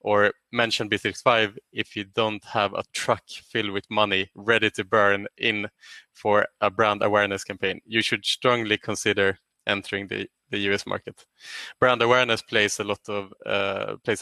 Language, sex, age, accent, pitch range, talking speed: English, male, 20-39, Norwegian, 105-120 Hz, 160 wpm